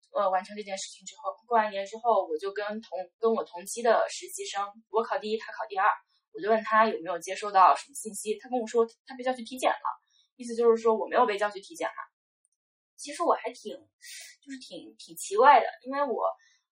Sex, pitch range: female, 215-280 Hz